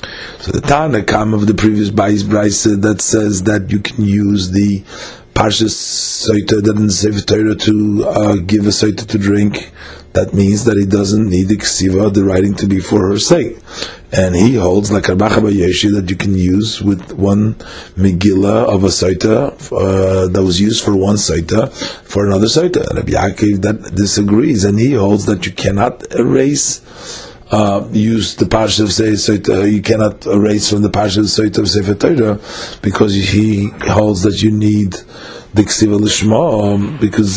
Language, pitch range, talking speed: English, 100-110 Hz, 170 wpm